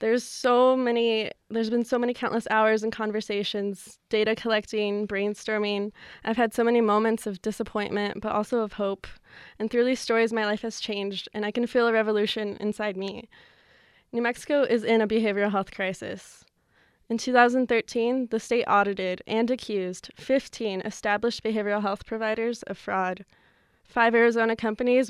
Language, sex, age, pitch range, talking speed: English, female, 20-39, 205-235 Hz, 160 wpm